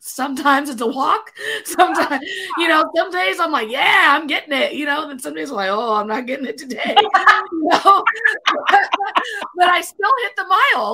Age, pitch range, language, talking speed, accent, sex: 20-39, 235-335 Hz, English, 195 wpm, American, female